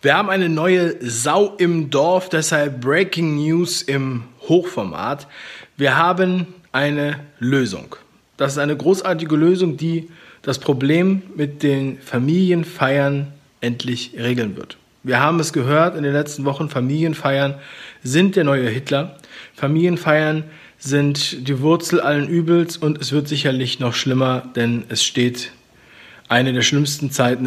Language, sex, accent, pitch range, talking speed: German, male, German, 125-160 Hz, 135 wpm